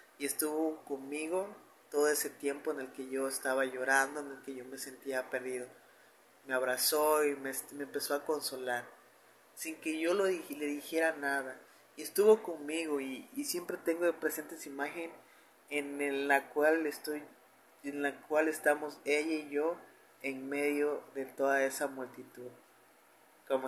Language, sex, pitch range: Spanish, male, 135-160 Hz